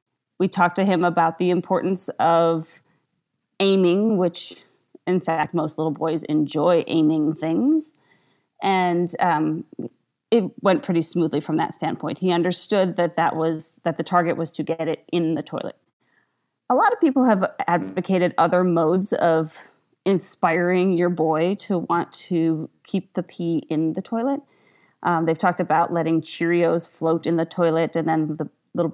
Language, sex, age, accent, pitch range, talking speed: English, female, 30-49, American, 165-195 Hz, 160 wpm